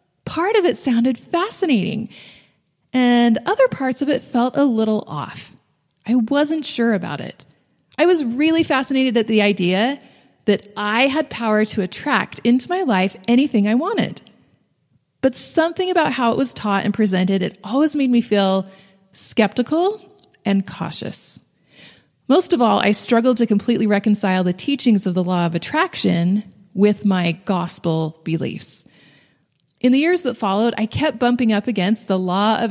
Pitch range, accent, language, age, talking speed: 195-275 Hz, American, English, 30-49, 160 wpm